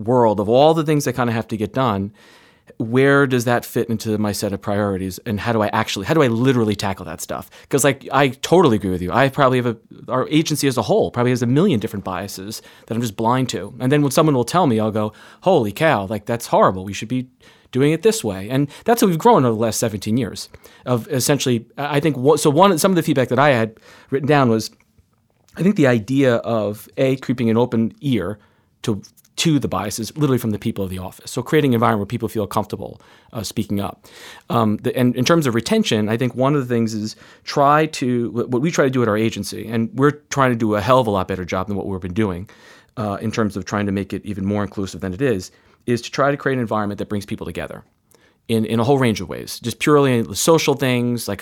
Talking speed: 250 wpm